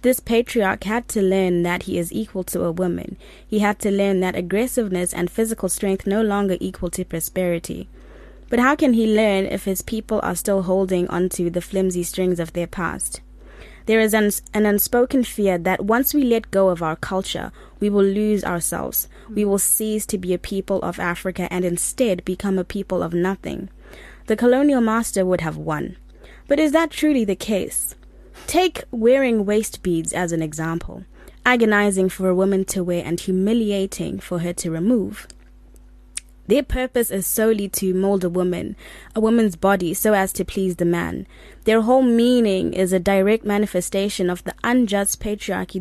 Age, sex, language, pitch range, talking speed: 20-39, female, English, 180-220 Hz, 180 wpm